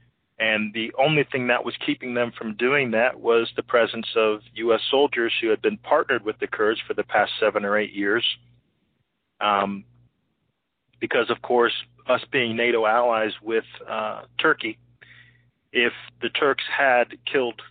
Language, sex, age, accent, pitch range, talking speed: English, male, 40-59, American, 110-120 Hz, 160 wpm